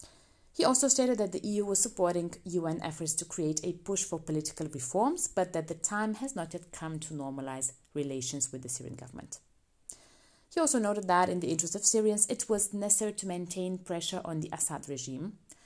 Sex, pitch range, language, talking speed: female, 145-195 Hz, English, 195 wpm